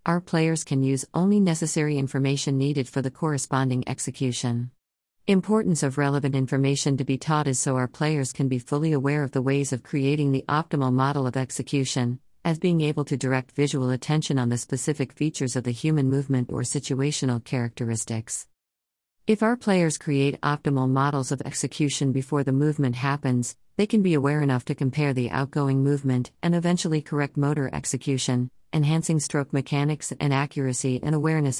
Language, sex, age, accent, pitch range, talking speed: English, female, 40-59, American, 130-155 Hz, 170 wpm